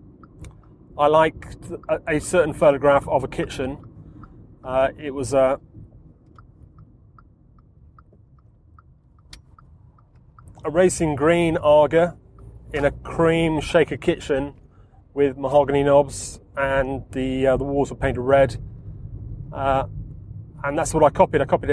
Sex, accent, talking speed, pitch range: male, British, 110 wpm, 125-150 Hz